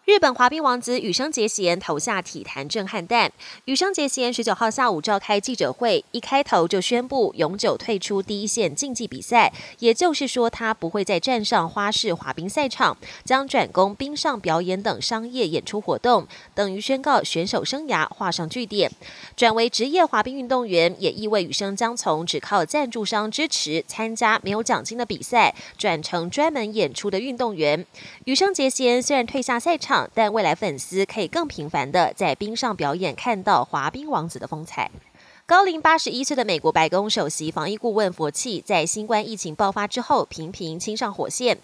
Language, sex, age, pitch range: Chinese, female, 20-39, 185-255 Hz